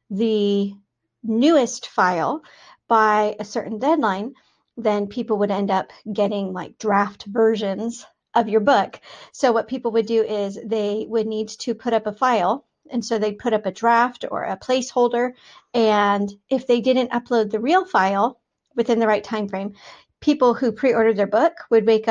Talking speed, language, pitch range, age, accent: 170 wpm, English, 210-255 Hz, 40-59, American